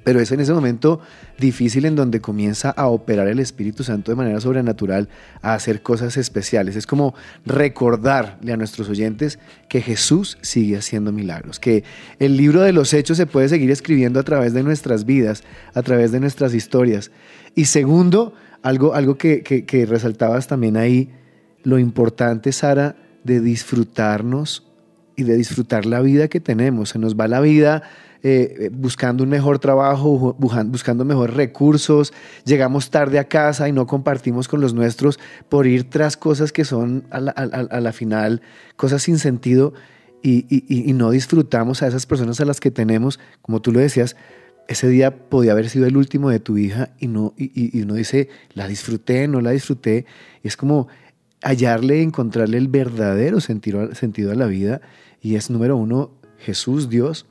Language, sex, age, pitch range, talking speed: Spanish, male, 30-49, 115-140 Hz, 175 wpm